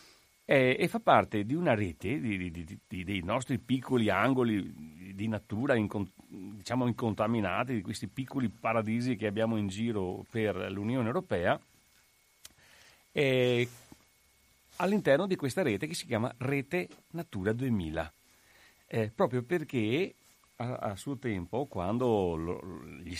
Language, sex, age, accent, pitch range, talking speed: Italian, male, 40-59, native, 90-120 Hz, 120 wpm